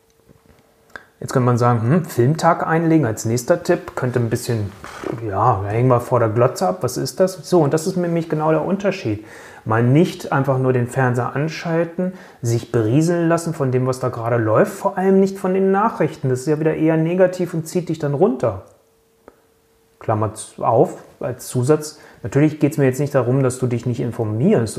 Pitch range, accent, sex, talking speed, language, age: 125-175 Hz, German, male, 195 wpm, German, 30-49